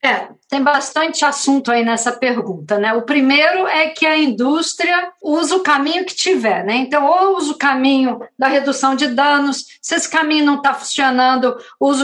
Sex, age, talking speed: female, 50-69, 180 wpm